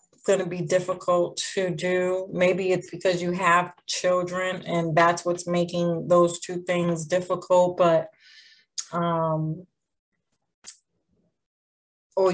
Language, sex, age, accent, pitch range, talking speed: English, female, 30-49, American, 175-185 Hz, 110 wpm